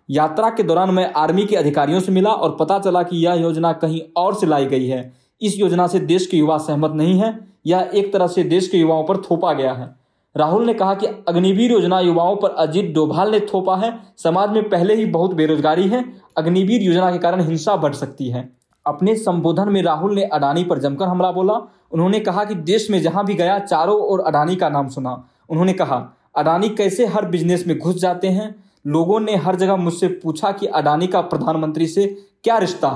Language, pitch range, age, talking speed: English, 160-195 Hz, 20-39, 135 wpm